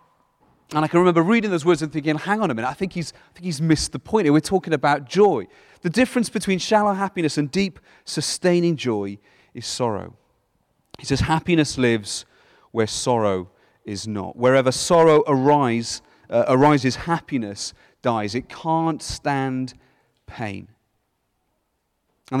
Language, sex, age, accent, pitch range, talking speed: English, male, 40-59, British, 120-170 Hz, 155 wpm